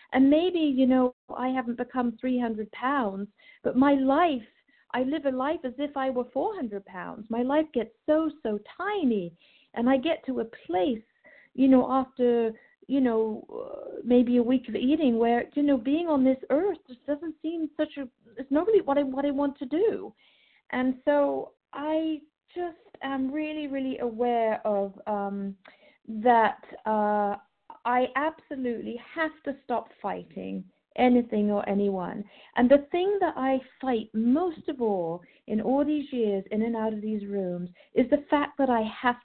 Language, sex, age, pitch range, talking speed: English, female, 50-69, 220-290 Hz, 175 wpm